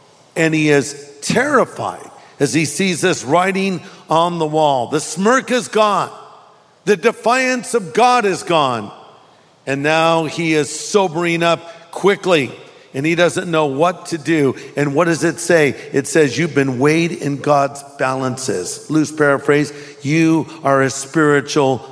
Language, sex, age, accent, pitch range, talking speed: English, male, 50-69, American, 145-200 Hz, 150 wpm